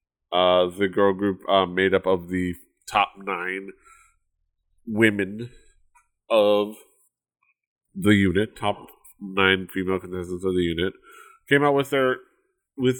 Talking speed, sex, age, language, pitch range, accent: 125 wpm, male, 30-49, English, 95-155 Hz, American